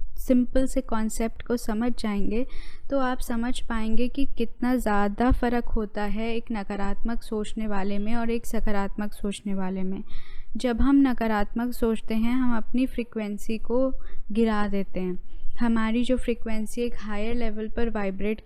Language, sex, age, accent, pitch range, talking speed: Hindi, female, 10-29, native, 210-245 Hz, 155 wpm